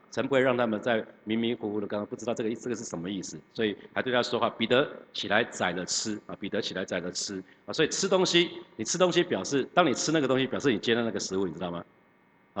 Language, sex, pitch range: Chinese, male, 95-120 Hz